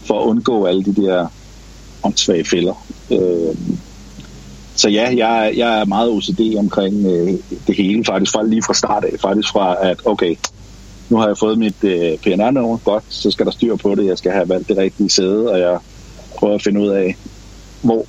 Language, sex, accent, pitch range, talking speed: Danish, male, native, 90-110 Hz, 195 wpm